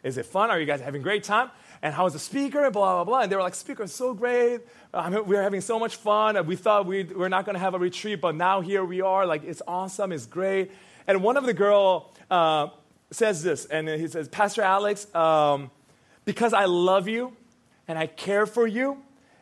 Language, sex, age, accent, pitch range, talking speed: English, male, 30-49, American, 165-205 Hz, 230 wpm